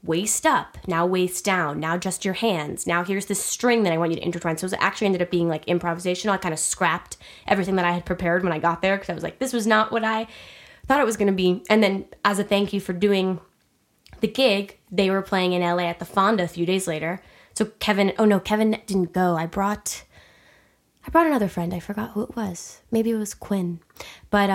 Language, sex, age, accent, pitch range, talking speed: English, female, 10-29, American, 175-210 Hz, 245 wpm